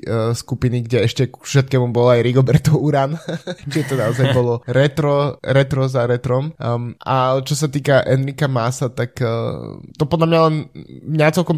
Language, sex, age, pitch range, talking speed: Slovak, male, 20-39, 115-130 Hz, 160 wpm